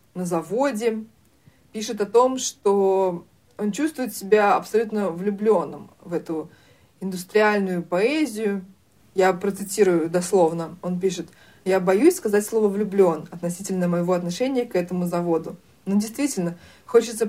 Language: Russian